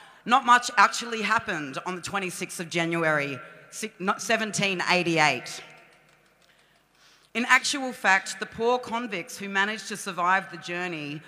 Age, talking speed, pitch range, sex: 40-59, 115 wpm, 180-230 Hz, female